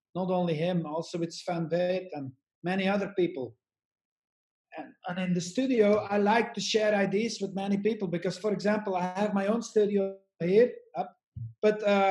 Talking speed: 170 wpm